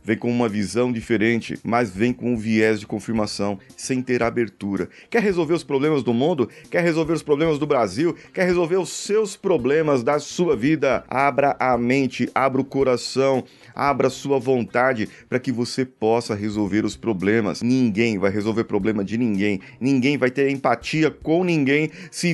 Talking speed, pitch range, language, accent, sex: 175 wpm, 110-145 Hz, Portuguese, Brazilian, male